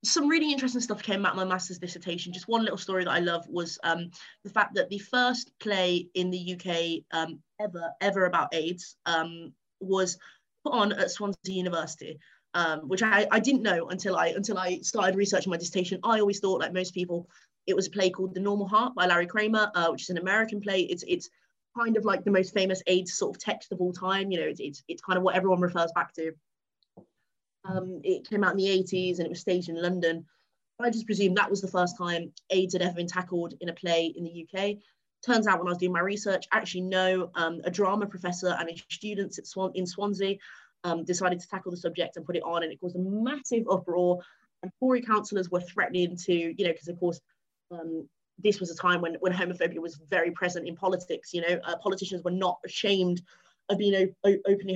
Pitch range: 175-200 Hz